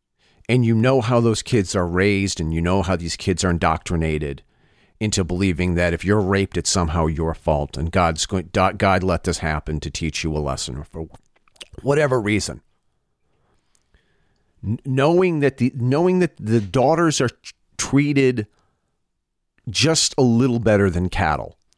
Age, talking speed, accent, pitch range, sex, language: 40-59, 160 wpm, American, 85-125 Hz, male, English